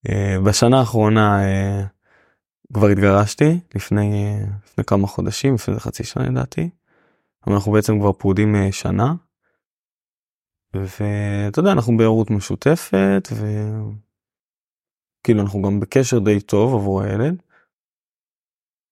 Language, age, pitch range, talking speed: Hebrew, 20-39, 100-130 Hz, 100 wpm